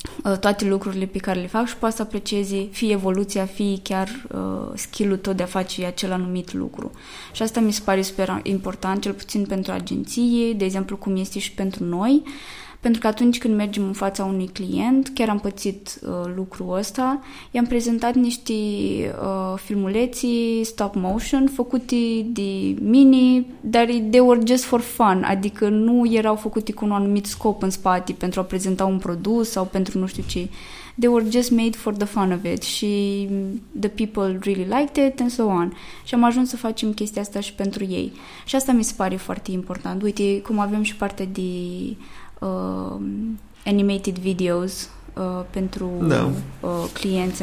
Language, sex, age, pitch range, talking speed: Romanian, female, 20-39, 190-235 Hz, 175 wpm